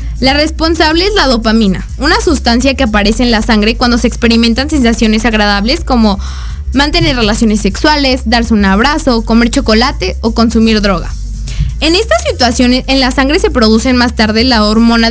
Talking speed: 165 wpm